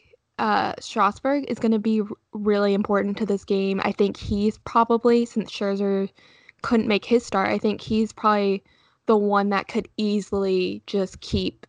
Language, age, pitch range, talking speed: English, 10-29, 200-235 Hz, 165 wpm